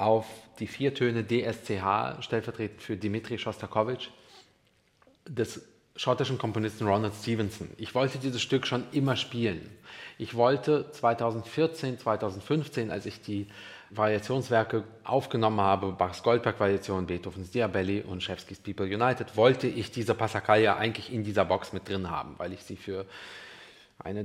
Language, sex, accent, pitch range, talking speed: German, male, German, 95-115 Hz, 140 wpm